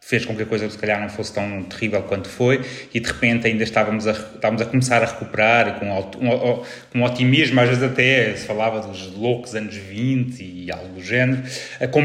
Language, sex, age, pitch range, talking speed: Portuguese, male, 30-49, 105-125 Hz, 225 wpm